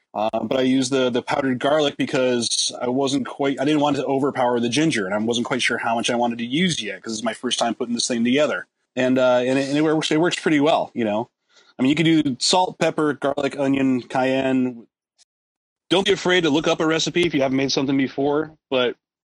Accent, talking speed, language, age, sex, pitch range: American, 240 wpm, English, 30-49, male, 130-175 Hz